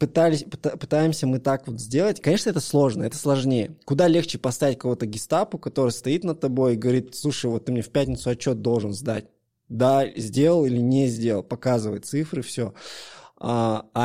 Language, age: Russian, 20-39